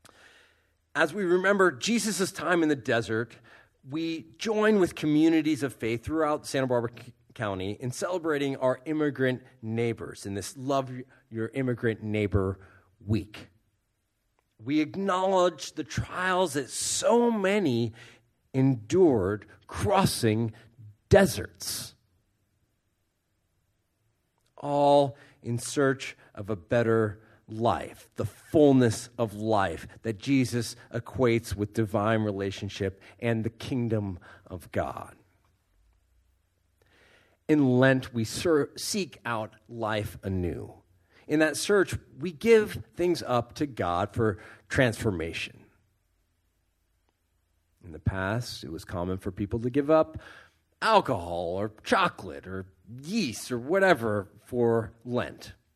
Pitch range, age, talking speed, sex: 100-135 Hz, 40-59, 110 wpm, male